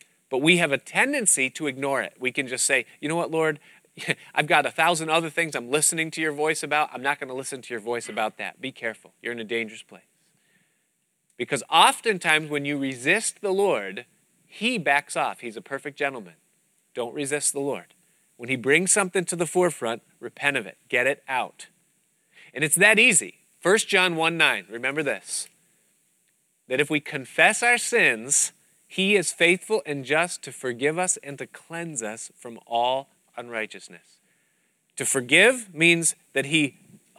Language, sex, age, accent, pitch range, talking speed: English, male, 30-49, American, 125-165 Hz, 180 wpm